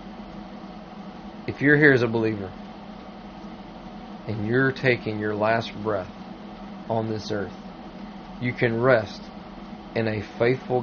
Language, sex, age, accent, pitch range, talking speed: English, male, 40-59, American, 110-155 Hz, 115 wpm